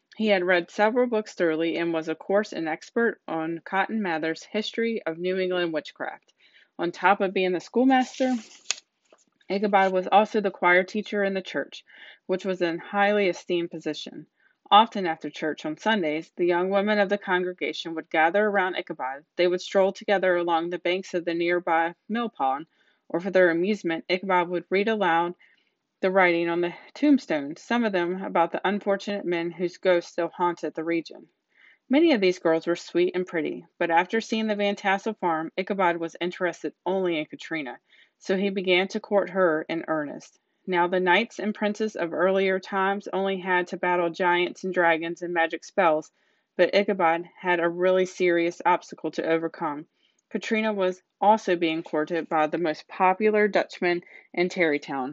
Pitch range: 170-205 Hz